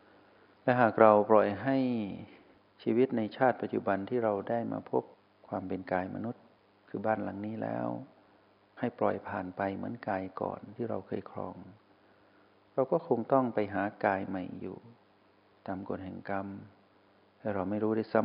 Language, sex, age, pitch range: Thai, male, 60-79, 95-115 Hz